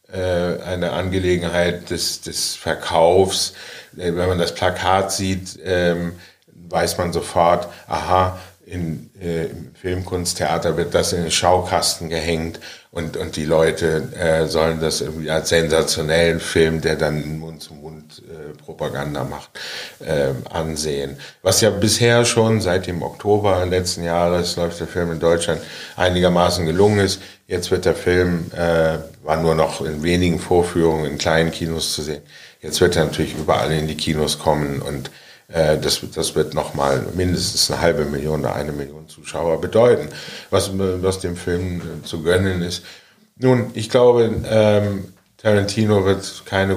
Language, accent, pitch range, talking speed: German, German, 80-95 Hz, 150 wpm